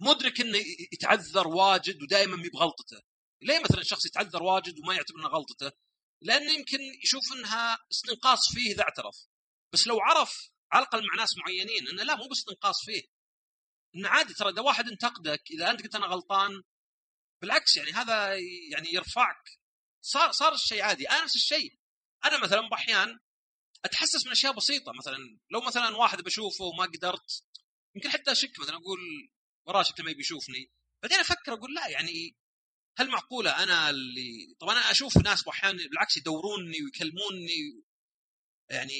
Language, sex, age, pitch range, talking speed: Arabic, male, 40-59, 155-250 Hz, 155 wpm